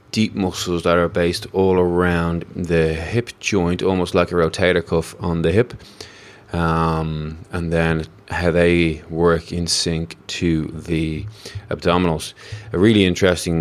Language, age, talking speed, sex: English, 20-39, 140 wpm, male